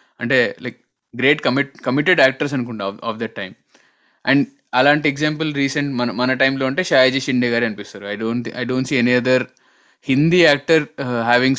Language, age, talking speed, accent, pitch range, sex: Telugu, 20-39, 165 wpm, native, 115-140 Hz, male